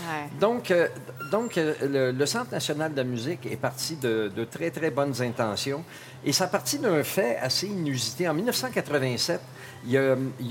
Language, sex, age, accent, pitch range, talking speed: French, male, 50-69, Canadian, 125-160 Hz, 175 wpm